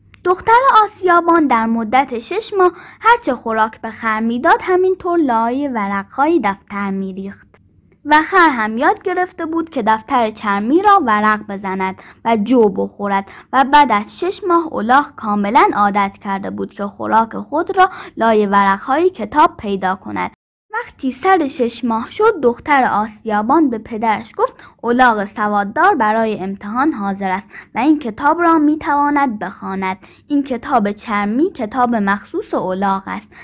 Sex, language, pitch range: female, Persian, 205-320 Hz